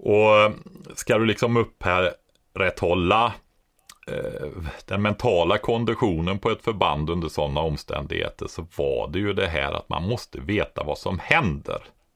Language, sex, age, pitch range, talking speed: Swedish, male, 30-49, 75-95 Hz, 155 wpm